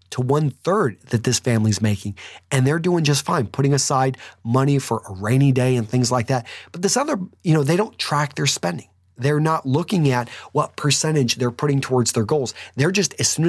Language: English